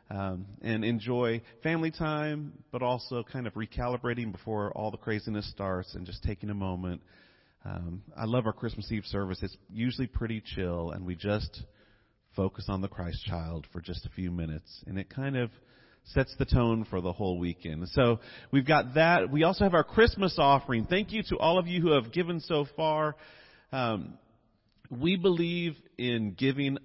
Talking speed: 180 wpm